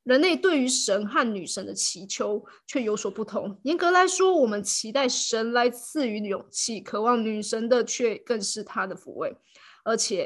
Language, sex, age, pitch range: Chinese, female, 20-39, 215-270 Hz